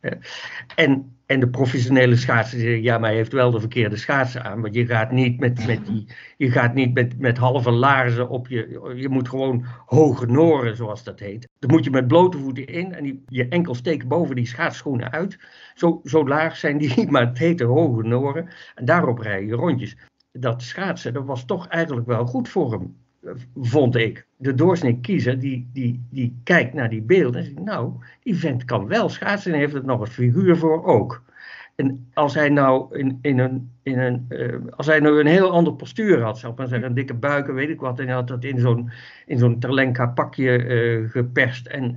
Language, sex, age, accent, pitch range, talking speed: Dutch, male, 50-69, Dutch, 120-150 Hz, 205 wpm